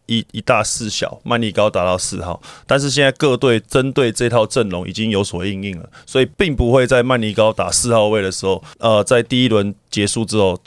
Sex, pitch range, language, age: male, 100-120 Hz, Chinese, 20-39